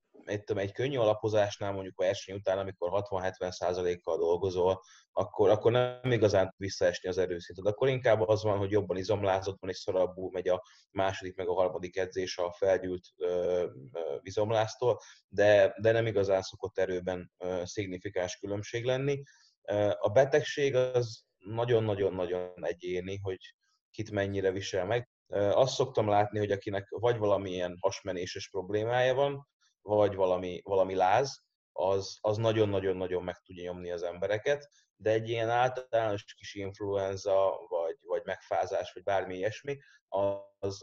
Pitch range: 95-125 Hz